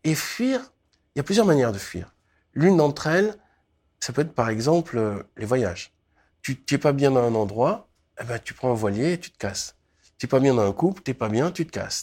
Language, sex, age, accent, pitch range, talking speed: French, male, 50-69, French, 120-160 Hz, 255 wpm